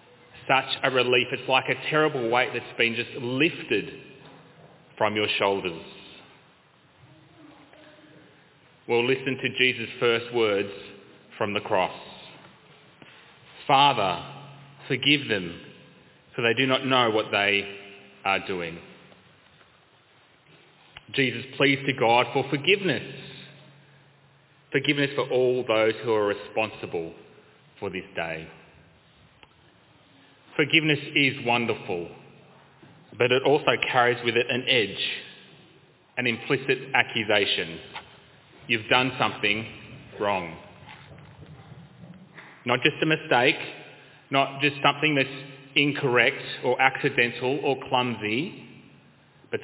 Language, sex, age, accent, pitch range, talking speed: English, male, 30-49, Australian, 115-145 Hz, 105 wpm